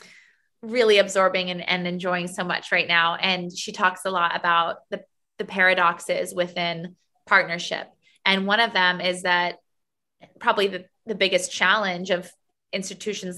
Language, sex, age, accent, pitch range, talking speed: English, female, 20-39, American, 185-220 Hz, 150 wpm